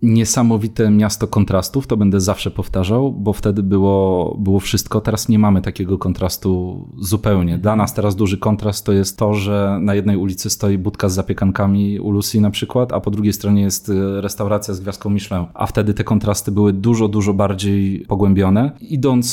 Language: Polish